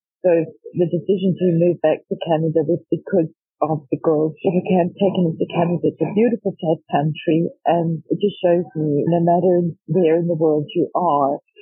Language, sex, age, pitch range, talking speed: English, female, 40-59, 160-195 Hz, 190 wpm